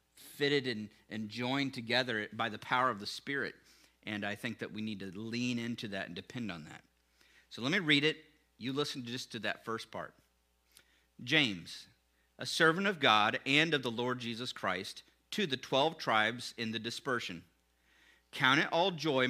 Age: 50-69